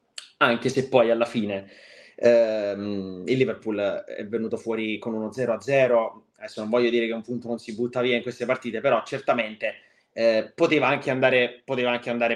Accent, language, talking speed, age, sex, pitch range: native, Italian, 185 wpm, 20-39, male, 120-145 Hz